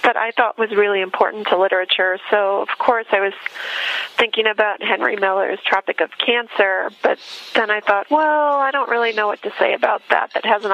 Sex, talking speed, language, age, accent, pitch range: female, 200 wpm, English, 30-49, American, 200-250 Hz